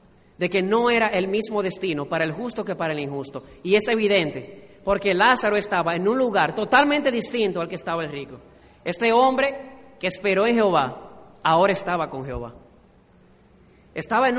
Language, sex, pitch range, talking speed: Spanish, male, 185-225 Hz, 175 wpm